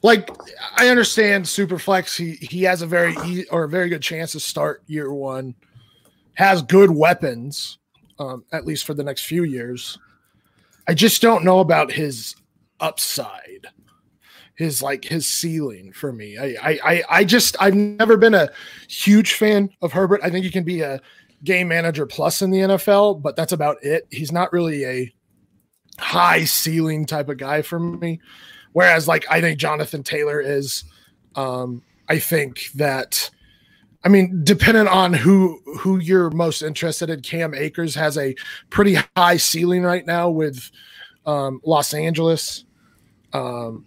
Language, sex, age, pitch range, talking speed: English, male, 30-49, 145-185 Hz, 160 wpm